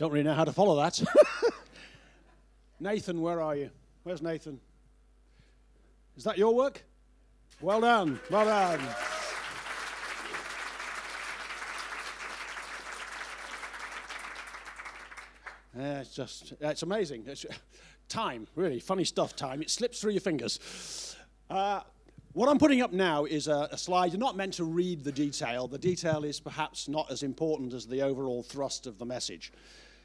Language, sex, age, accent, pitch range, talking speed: English, male, 50-69, British, 140-195 Hz, 135 wpm